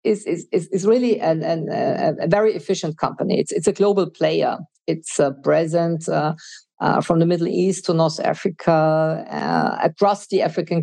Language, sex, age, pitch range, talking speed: English, female, 50-69, 165-210 Hz, 165 wpm